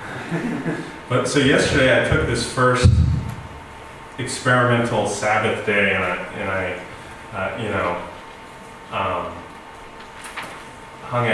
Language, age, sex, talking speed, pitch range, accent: English, 20-39, male, 100 wpm, 95-120 Hz, American